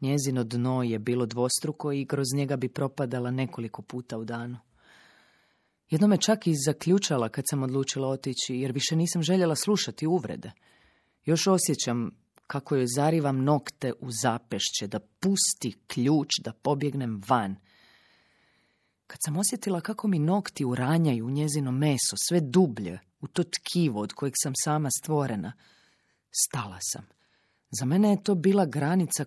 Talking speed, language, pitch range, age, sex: 145 wpm, Croatian, 120-160 Hz, 30-49, female